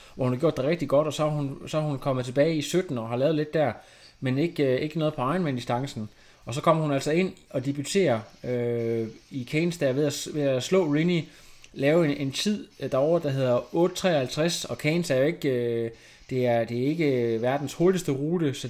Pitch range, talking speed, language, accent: 125-155 Hz, 225 wpm, Danish, native